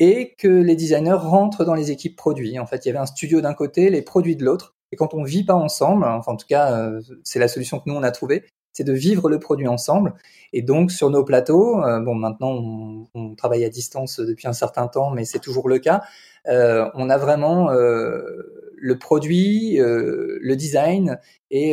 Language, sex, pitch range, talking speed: French, male, 130-180 Hz, 215 wpm